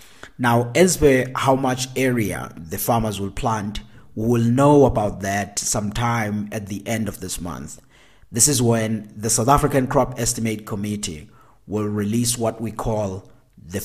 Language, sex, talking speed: English, male, 160 wpm